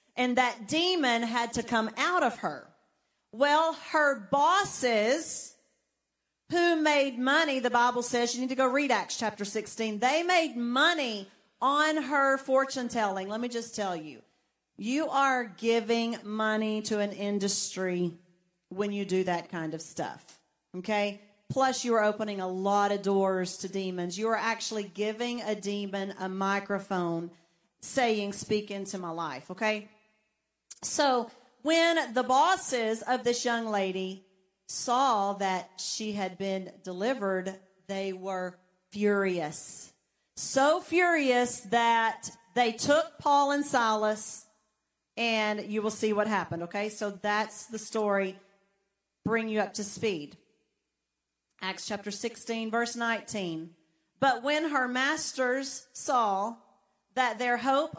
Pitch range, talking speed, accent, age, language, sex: 195-250 Hz, 135 wpm, American, 40-59, English, female